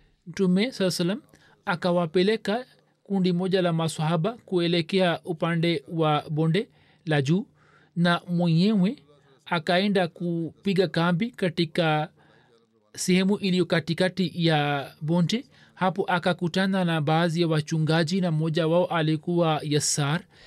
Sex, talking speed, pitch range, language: male, 105 wpm, 160-195 Hz, Swahili